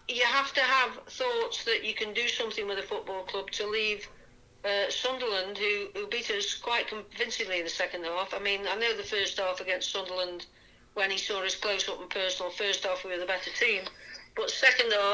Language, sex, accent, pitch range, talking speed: English, female, British, 200-300 Hz, 215 wpm